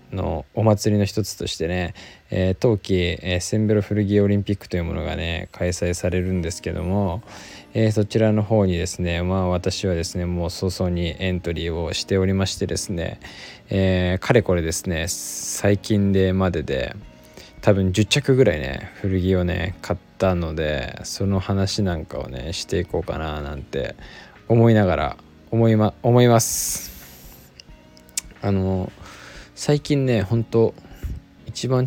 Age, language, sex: 20-39, Japanese, male